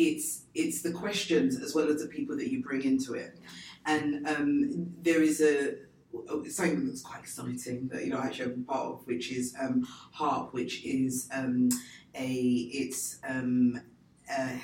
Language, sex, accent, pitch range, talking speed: English, female, British, 130-175 Hz, 180 wpm